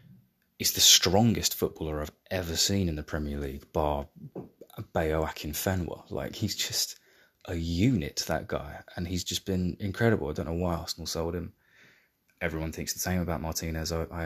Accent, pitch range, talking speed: British, 80-100 Hz, 170 wpm